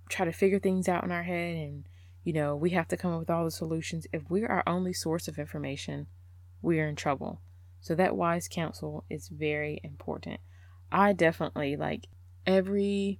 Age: 20-39